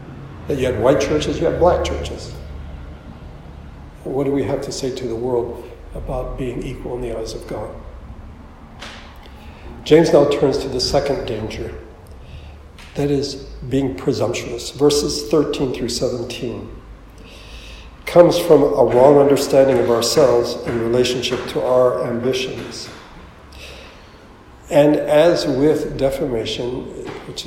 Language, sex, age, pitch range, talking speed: English, male, 60-79, 110-140 Hz, 125 wpm